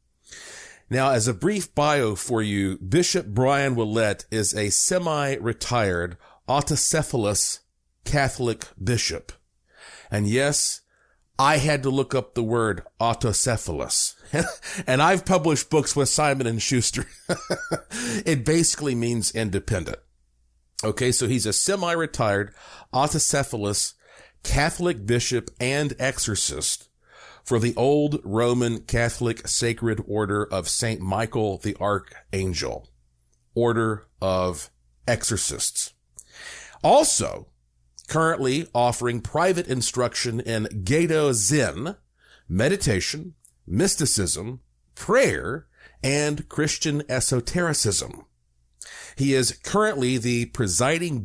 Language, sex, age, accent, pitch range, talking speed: English, male, 50-69, American, 105-145 Hz, 95 wpm